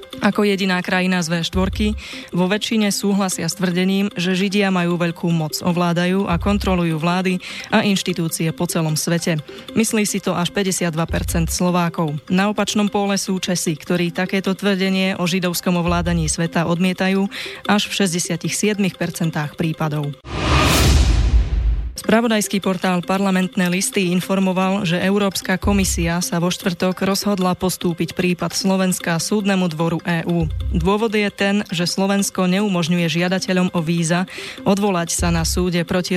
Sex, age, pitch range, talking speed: female, 20-39, 170-195 Hz, 130 wpm